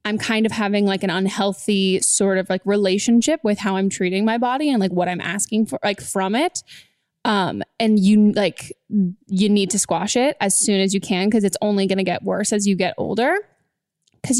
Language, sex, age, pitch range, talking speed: English, female, 20-39, 200-235 Hz, 215 wpm